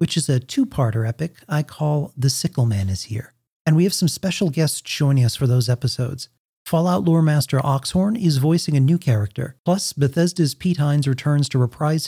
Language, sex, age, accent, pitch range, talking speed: English, male, 40-59, American, 125-165 Hz, 195 wpm